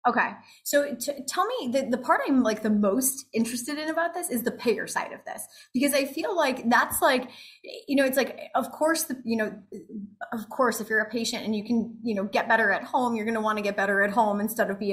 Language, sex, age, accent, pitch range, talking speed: English, female, 20-39, American, 210-275 Hz, 255 wpm